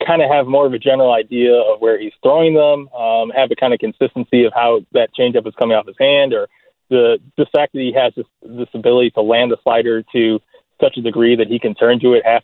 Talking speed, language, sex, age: 255 wpm, English, male, 20-39